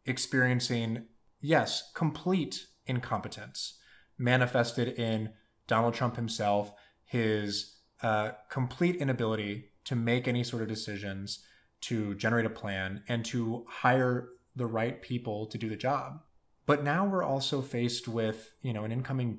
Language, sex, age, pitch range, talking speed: English, male, 20-39, 115-140 Hz, 135 wpm